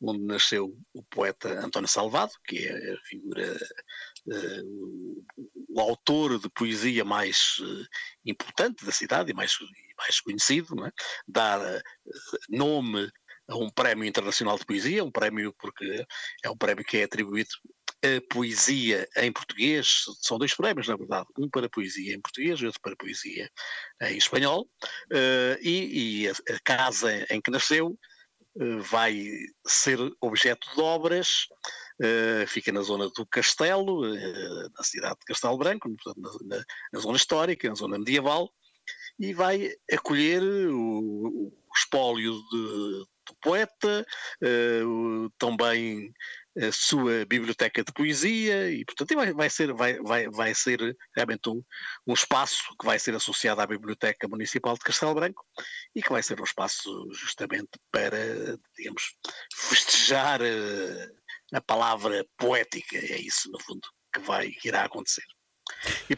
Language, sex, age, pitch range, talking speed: Portuguese, male, 50-69, 110-170 Hz, 135 wpm